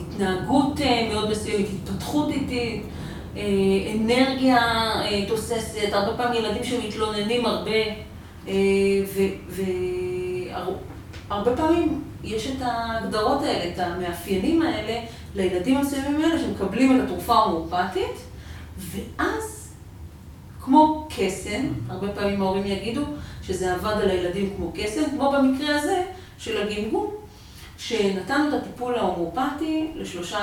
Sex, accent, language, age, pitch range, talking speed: female, native, Hebrew, 40-59, 190-265 Hz, 105 wpm